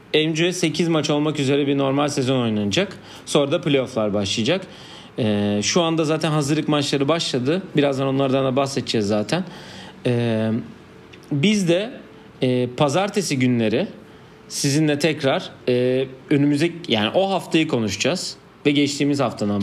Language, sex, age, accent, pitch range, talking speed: Turkish, male, 40-59, native, 125-160 Hz, 130 wpm